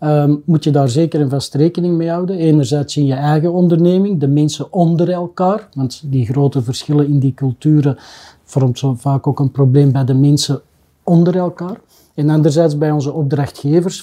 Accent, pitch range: Dutch, 140-165 Hz